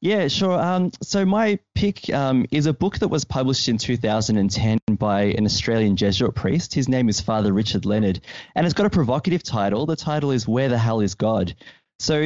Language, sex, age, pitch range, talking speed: English, male, 20-39, 105-145 Hz, 200 wpm